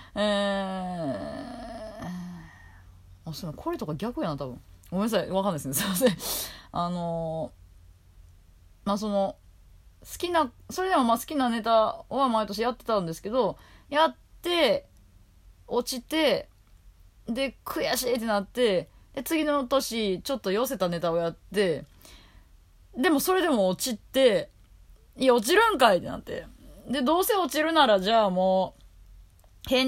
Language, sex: Japanese, female